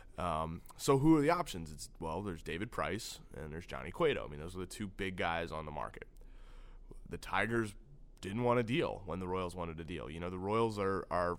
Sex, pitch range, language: male, 90-115 Hz, English